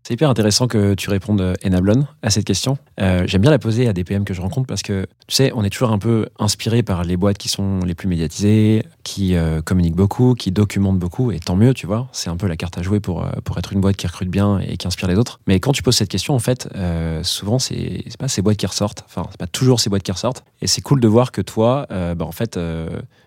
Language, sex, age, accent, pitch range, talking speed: French, male, 20-39, French, 90-110 Hz, 280 wpm